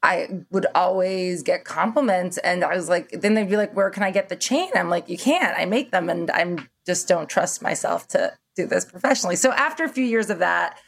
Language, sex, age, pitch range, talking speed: English, female, 20-39, 170-205 Hz, 235 wpm